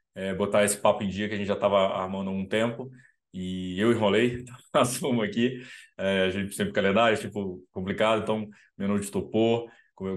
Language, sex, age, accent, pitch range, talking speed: Portuguese, male, 20-39, Brazilian, 100-130 Hz, 205 wpm